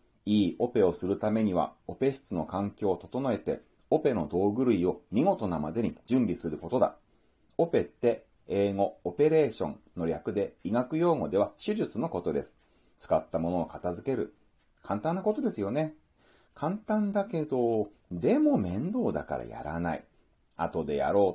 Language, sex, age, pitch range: Japanese, male, 30-49, 105-170 Hz